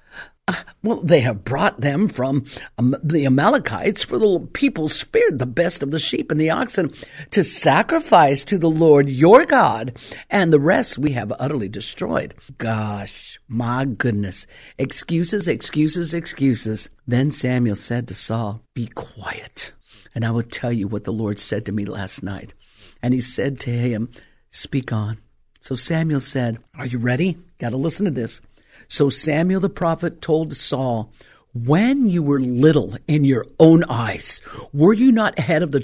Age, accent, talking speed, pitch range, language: 50-69, American, 165 wpm, 125-170 Hz, English